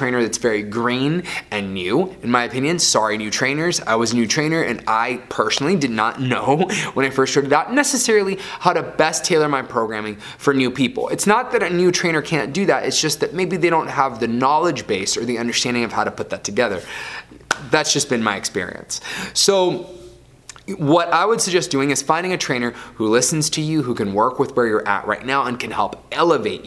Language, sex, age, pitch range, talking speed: English, male, 20-39, 120-175 Hz, 220 wpm